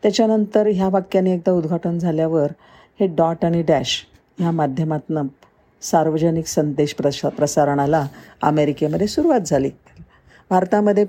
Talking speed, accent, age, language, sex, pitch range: 110 wpm, native, 50-69, Marathi, female, 140-185 Hz